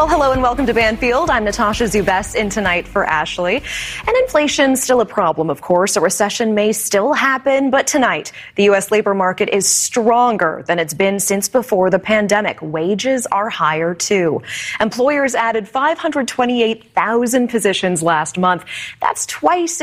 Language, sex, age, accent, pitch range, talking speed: English, female, 20-39, American, 185-255 Hz, 155 wpm